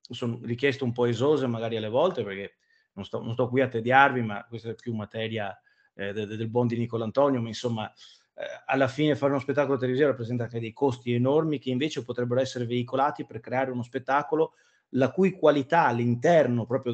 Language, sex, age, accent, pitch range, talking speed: Italian, male, 30-49, native, 120-175 Hz, 200 wpm